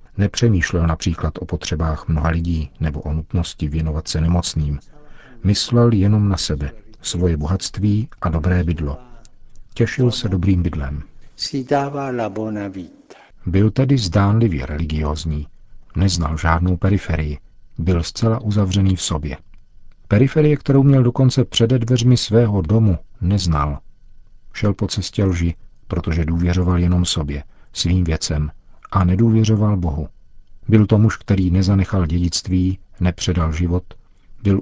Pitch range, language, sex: 85-105 Hz, Czech, male